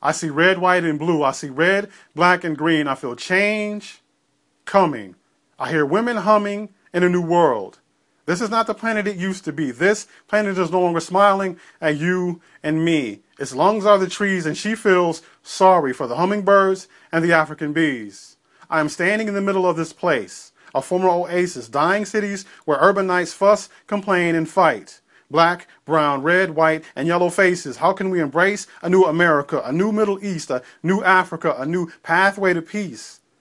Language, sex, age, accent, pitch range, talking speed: English, male, 40-59, American, 160-195 Hz, 190 wpm